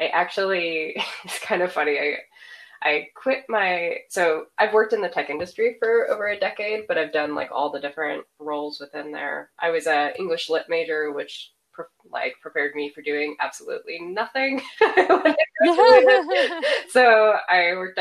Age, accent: 20-39, American